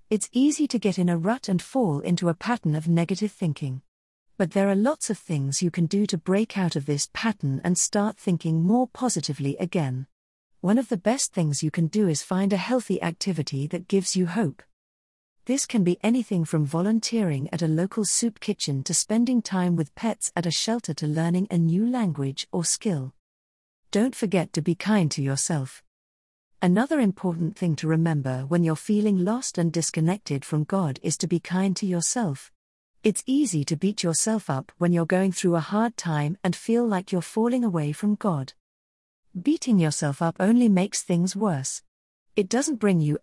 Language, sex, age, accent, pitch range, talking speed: English, female, 40-59, British, 150-210 Hz, 190 wpm